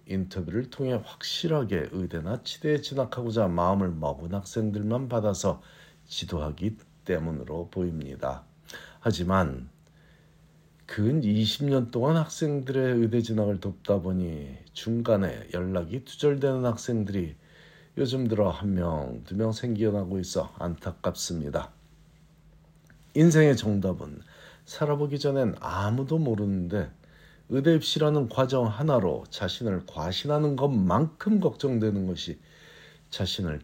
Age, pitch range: 50-69, 90-145 Hz